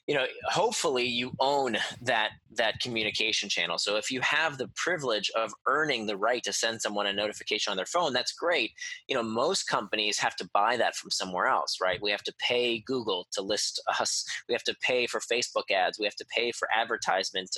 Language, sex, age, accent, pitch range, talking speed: English, male, 20-39, American, 120-185 Hz, 210 wpm